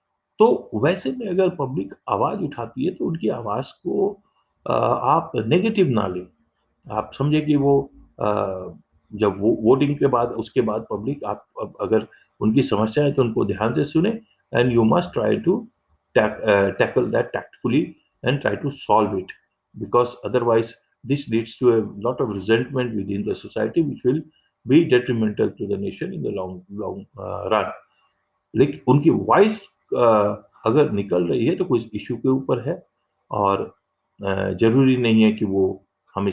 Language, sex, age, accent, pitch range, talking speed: English, male, 50-69, Indian, 95-125 Hz, 150 wpm